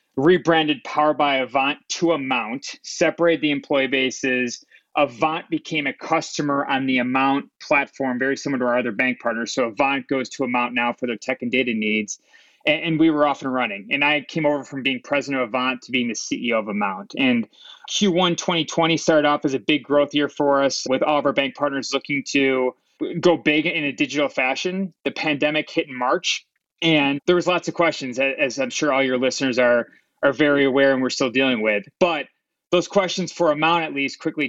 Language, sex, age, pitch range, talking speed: English, male, 20-39, 130-160 Hz, 205 wpm